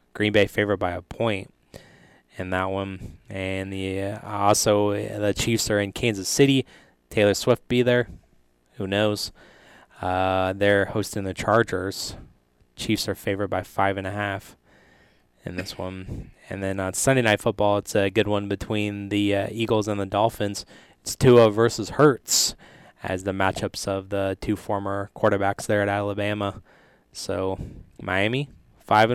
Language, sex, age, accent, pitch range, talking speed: English, male, 20-39, American, 95-105 Hz, 155 wpm